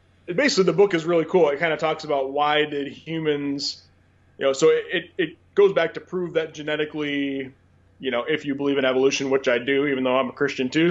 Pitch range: 130-155 Hz